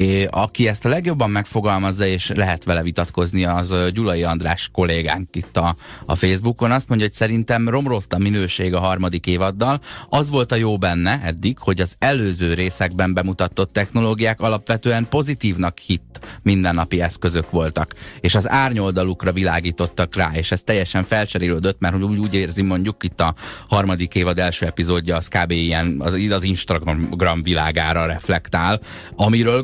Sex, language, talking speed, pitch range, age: male, Hungarian, 150 wpm, 85-100 Hz, 30-49